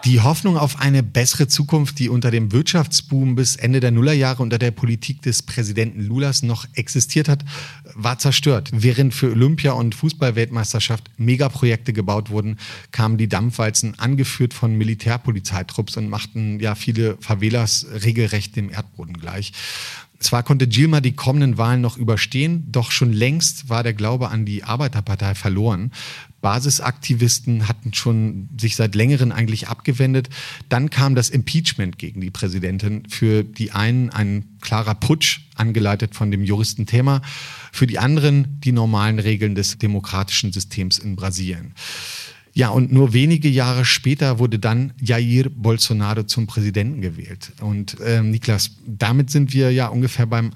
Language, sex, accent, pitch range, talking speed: German, male, German, 110-130 Hz, 145 wpm